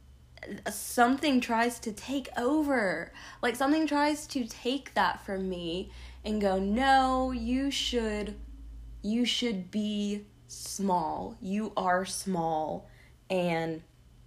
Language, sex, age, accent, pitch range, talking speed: English, female, 20-39, American, 180-260 Hz, 110 wpm